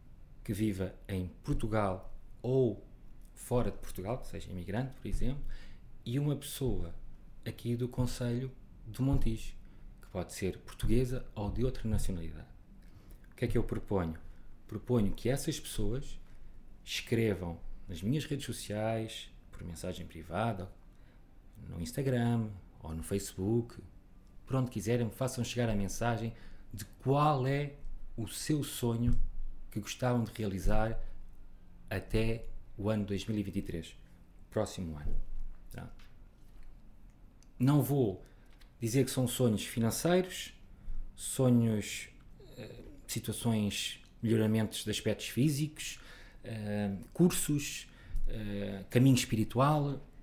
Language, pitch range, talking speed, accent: Portuguese, 95-125 Hz, 110 wpm, Portuguese